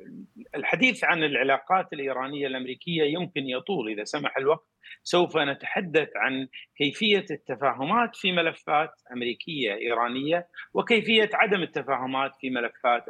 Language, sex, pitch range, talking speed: Arabic, male, 135-200 Hz, 110 wpm